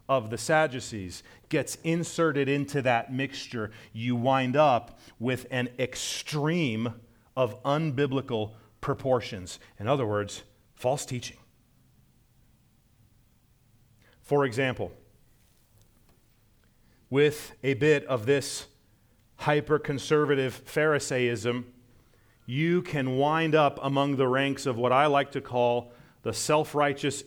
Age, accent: 40-59, American